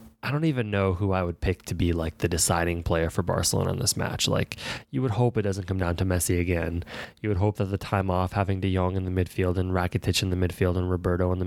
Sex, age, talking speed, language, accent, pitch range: male, 20-39, 270 wpm, English, American, 90-105 Hz